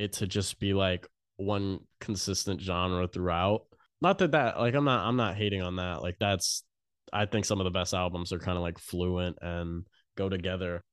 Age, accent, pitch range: 20-39, American, 90-115 Hz